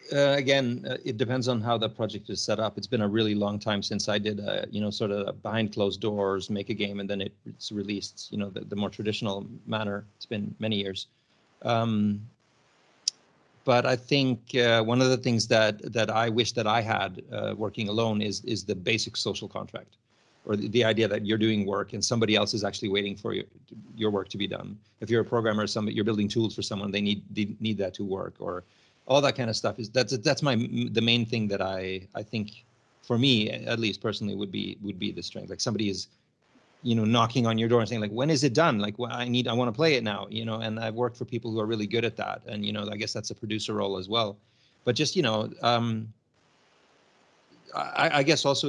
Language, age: English, 40-59